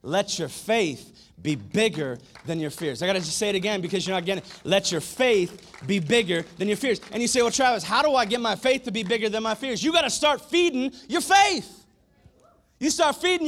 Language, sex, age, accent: English, male, 30-49, American